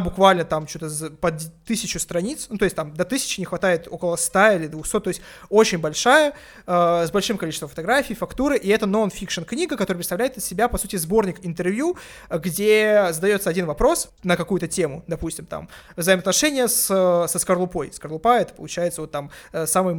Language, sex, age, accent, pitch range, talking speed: Russian, male, 20-39, native, 170-220 Hz, 180 wpm